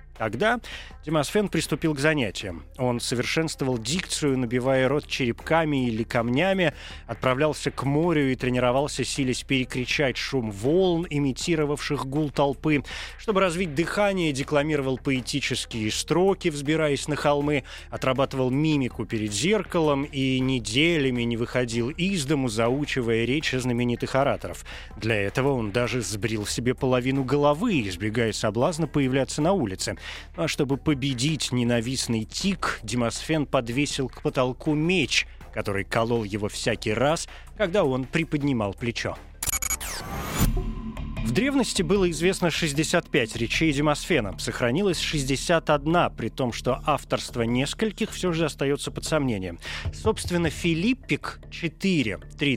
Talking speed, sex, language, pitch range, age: 120 wpm, male, Russian, 120-155 Hz, 20-39